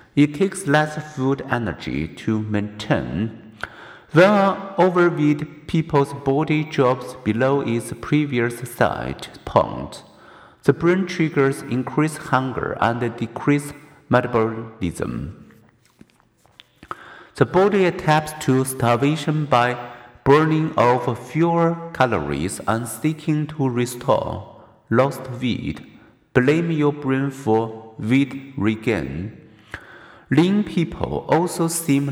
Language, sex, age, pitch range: Chinese, male, 50-69, 115-150 Hz